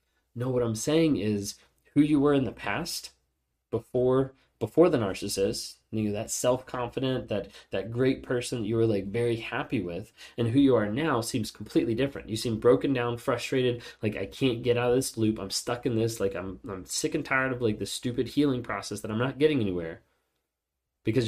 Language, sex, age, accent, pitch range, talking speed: English, male, 20-39, American, 90-125 Hz, 205 wpm